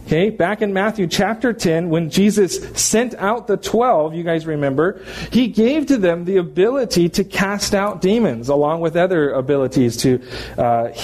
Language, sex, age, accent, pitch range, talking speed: English, male, 40-59, American, 140-195 Hz, 165 wpm